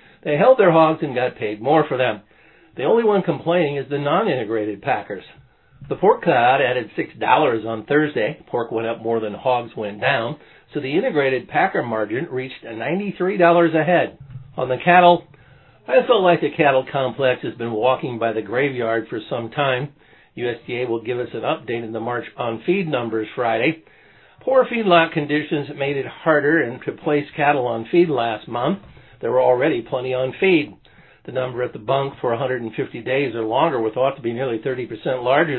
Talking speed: 185 wpm